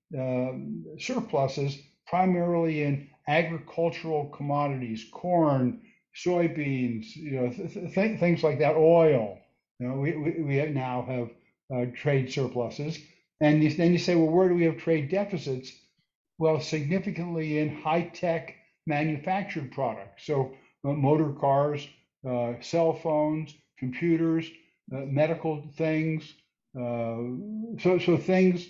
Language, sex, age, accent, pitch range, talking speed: English, male, 60-79, American, 140-175 Hz, 130 wpm